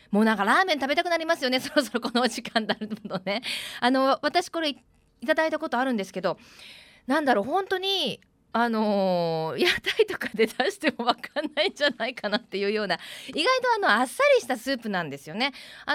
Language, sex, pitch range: Japanese, female, 205-310 Hz